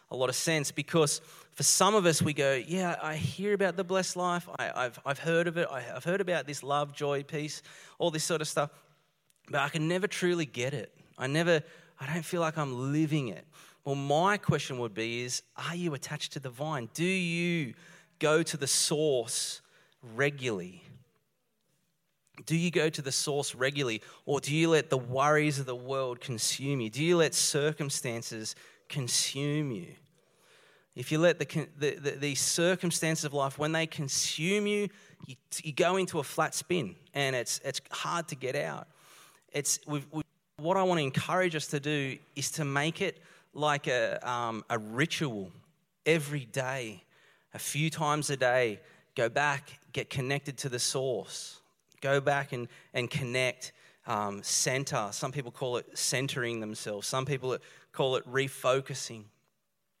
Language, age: English, 30-49